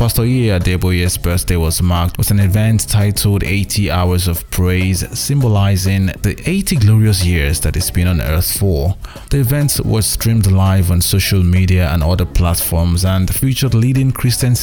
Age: 20-39